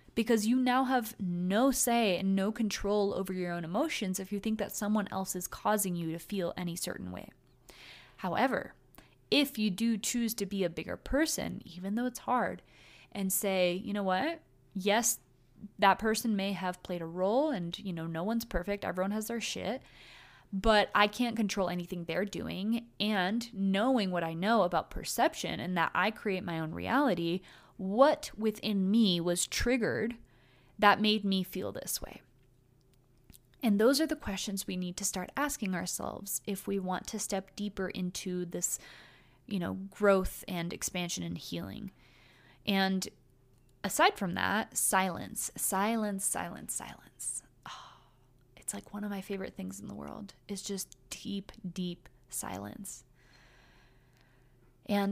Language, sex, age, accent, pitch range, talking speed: English, female, 20-39, American, 180-215 Hz, 160 wpm